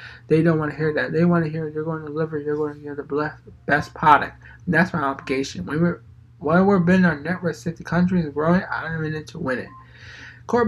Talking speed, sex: 240 wpm, male